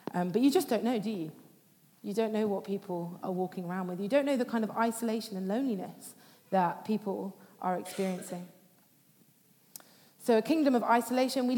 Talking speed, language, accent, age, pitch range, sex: 185 wpm, English, British, 30-49, 195-230 Hz, female